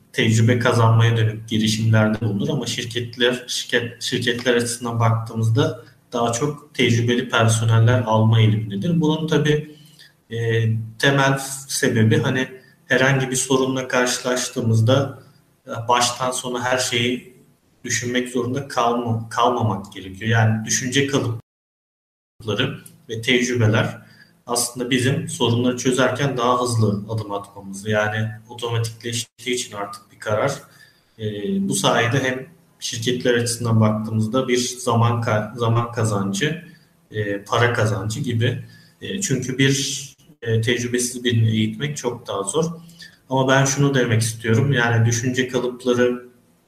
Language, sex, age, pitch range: Turkish, male, 40-59, 115-130 Hz